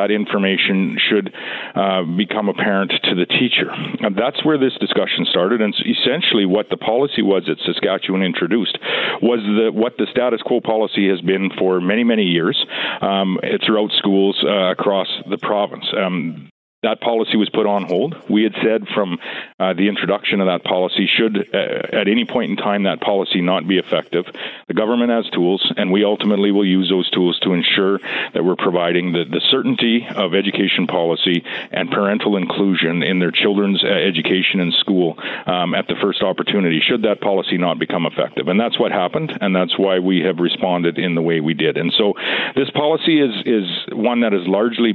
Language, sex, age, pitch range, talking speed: English, male, 50-69, 90-110 Hz, 190 wpm